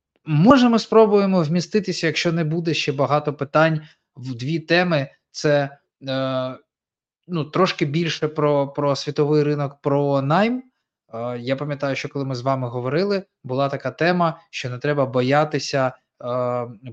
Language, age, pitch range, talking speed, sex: Ukrainian, 20-39, 120-150 Hz, 145 wpm, male